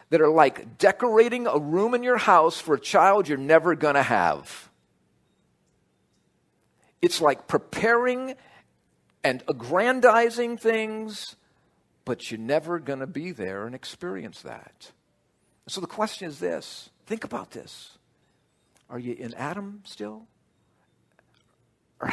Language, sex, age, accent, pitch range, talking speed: English, male, 50-69, American, 120-185 Hz, 125 wpm